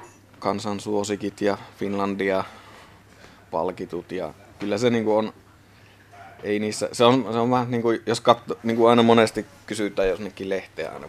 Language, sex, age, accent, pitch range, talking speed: Finnish, male, 20-39, native, 100-115 Hz, 70 wpm